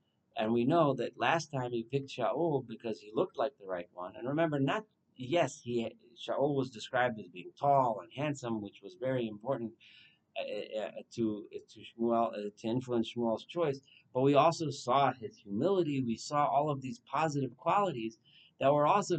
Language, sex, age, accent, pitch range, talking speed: English, male, 40-59, American, 115-150 Hz, 185 wpm